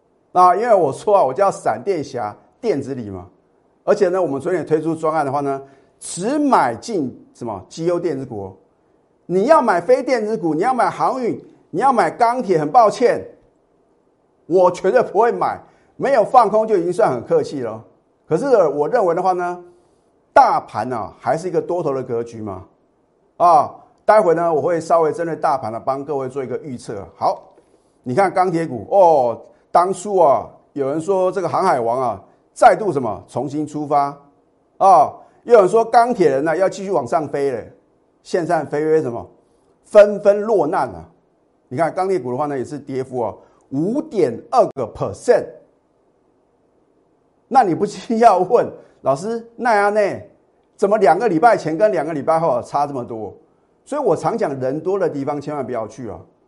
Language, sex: Chinese, male